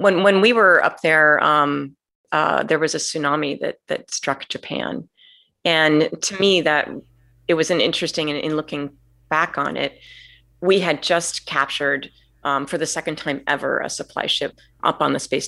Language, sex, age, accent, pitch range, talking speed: English, female, 30-49, American, 145-170 Hz, 185 wpm